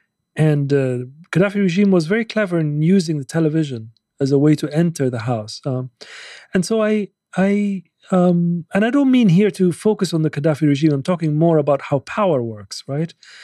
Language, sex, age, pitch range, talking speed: English, male, 40-59, 140-185 Hz, 190 wpm